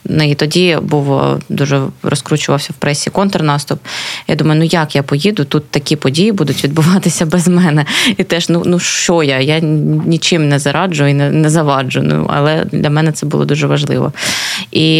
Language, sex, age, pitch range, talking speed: Ukrainian, female, 20-39, 150-175 Hz, 175 wpm